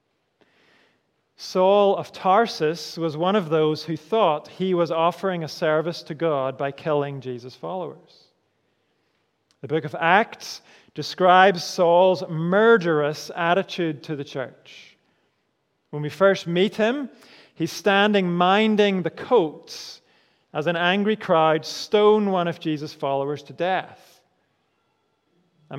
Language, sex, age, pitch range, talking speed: English, male, 40-59, 155-195 Hz, 125 wpm